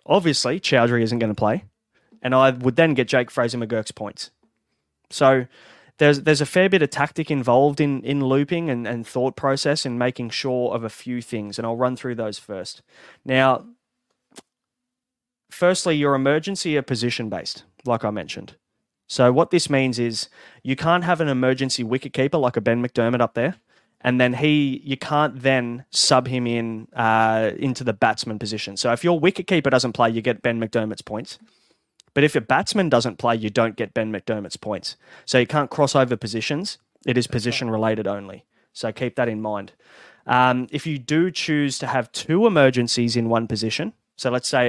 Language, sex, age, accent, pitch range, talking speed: English, male, 20-39, Australian, 115-140 Hz, 185 wpm